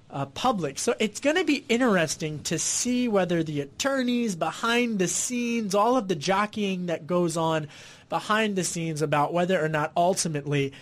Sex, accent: male, American